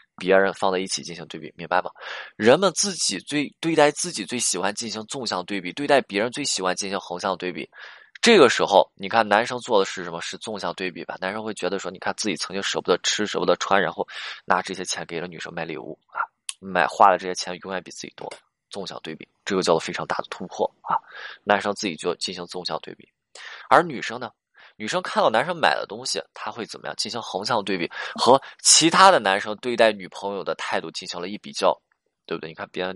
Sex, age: male, 20-39